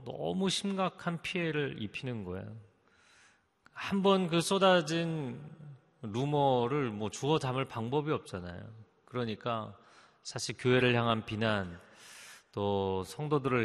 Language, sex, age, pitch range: Korean, male, 40-59, 105-140 Hz